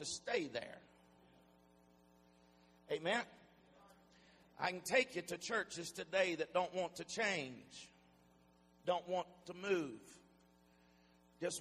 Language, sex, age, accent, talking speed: English, male, 50-69, American, 110 wpm